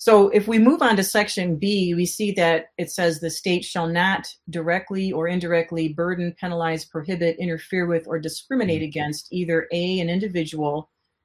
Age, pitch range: 40-59, 160-195 Hz